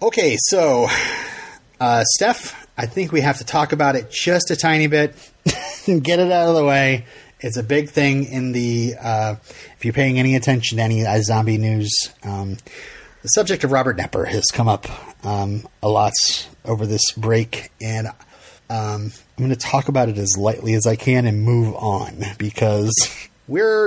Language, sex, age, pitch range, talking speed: English, male, 30-49, 110-135 Hz, 185 wpm